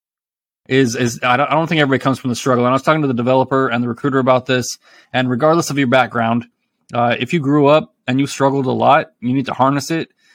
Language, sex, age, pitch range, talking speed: English, male, 20-39, 115-135 Hz, 250 wpm